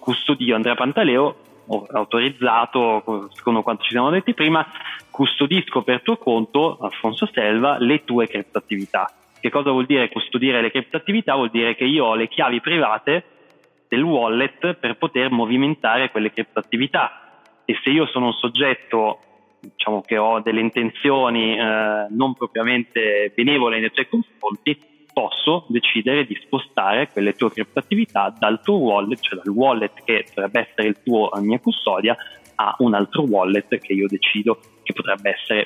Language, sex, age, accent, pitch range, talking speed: Italian, male, 20-39, native, 110-135 Hz, 155 wpm